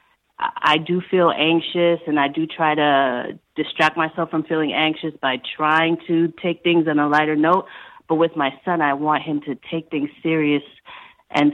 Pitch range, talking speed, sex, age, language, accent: 140-170 Hz, 180 wpm, female, 30-49, English, American